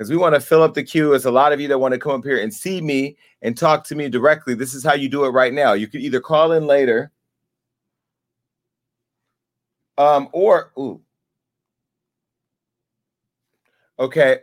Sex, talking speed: male, 185 wpm